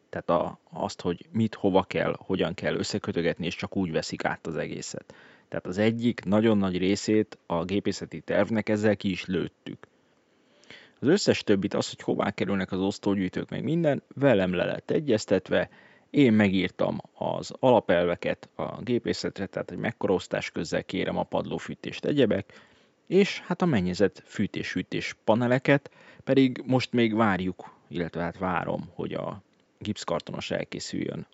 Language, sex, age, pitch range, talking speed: Hungarian, male, 30-49, 95-120 Hz, 145 wpm